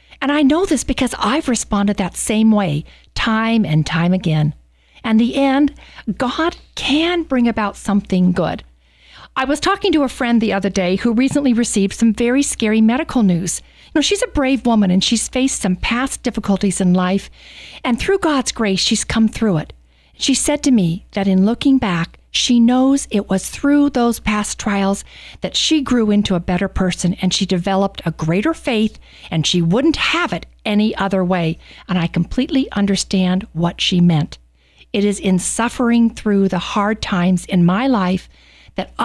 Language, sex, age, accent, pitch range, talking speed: English, female, 50-69, American, 185-255 Hz, 180 wpm